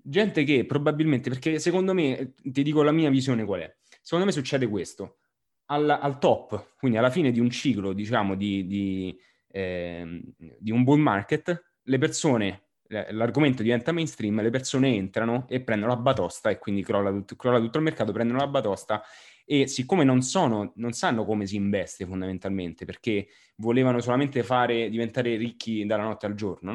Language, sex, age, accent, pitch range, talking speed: English, male, 20-39, Italian, 105-135 Hz, 175 wpm